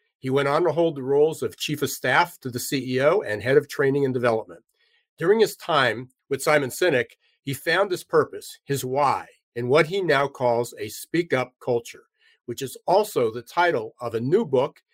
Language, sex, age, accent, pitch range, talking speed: English, male, 50-69, American, 120-180 Hz, 200 wpm